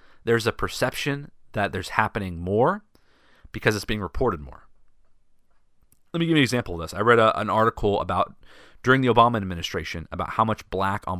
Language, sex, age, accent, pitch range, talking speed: English, male, 30-49, American, 90-115 Hz, 180 wpm